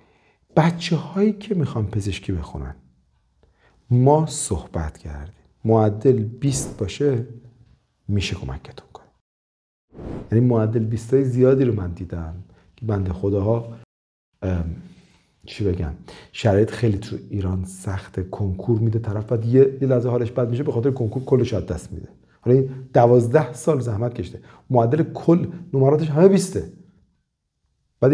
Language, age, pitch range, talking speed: Persian, 40-59, 95-130 Hz, 130 wpm